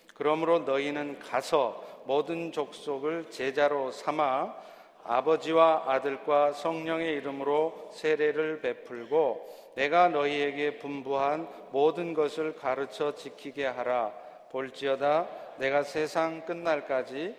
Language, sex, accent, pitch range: Korean, male, native, 140-185 Hz